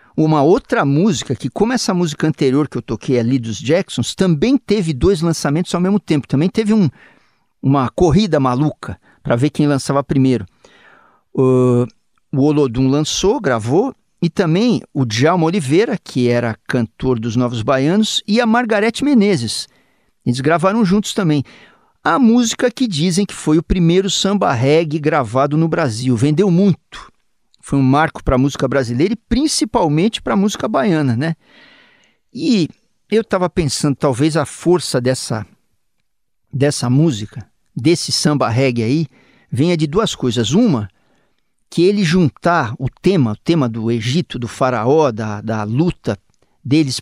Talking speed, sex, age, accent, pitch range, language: 150 wpm, male, 50-69, Brazilian, 130-190 Hz, Portuguese